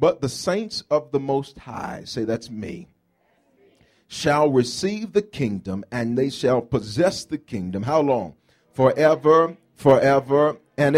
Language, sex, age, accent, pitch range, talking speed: English, male, 40-59, American, 110-150 Hz, 135 wpm